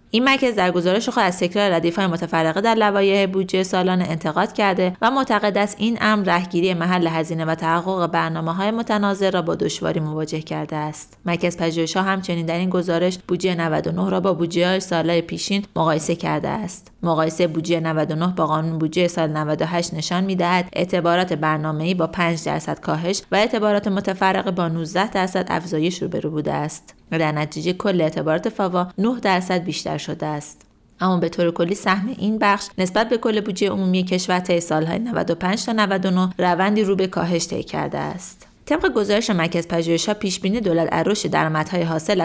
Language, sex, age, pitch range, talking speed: Persian, female, 30-49, 165-195 Hz, 175 wpm